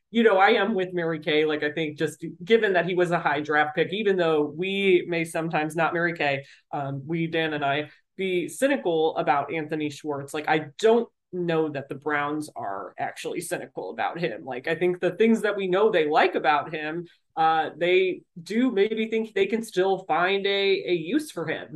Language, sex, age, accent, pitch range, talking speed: English, male, 30-49, American, 150-185 Hz, 205 wpm